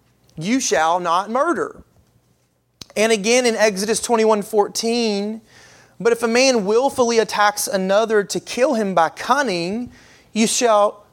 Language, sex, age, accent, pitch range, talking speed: English, male, 30-49, American, 180-230 Hz, 130 wpm